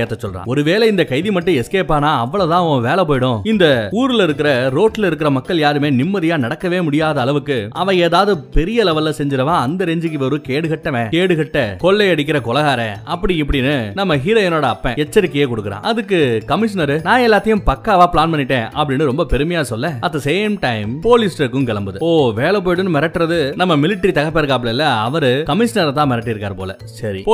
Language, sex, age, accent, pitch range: Tamil, male, 30-49, native, 135-180 Hz